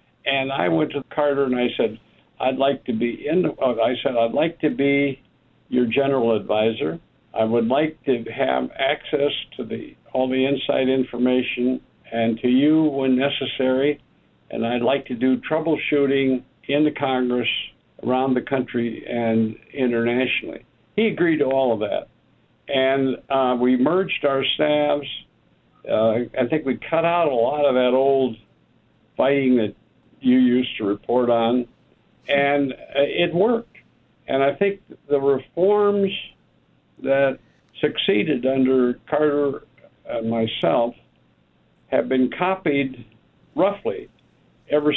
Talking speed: 135 wpm